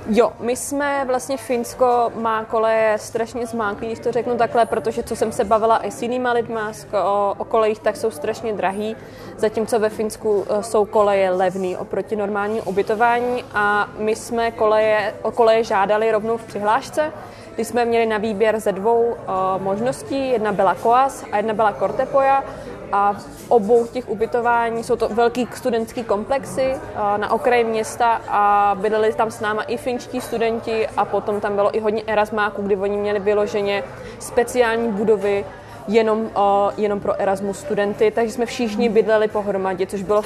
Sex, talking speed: female, 160 wpm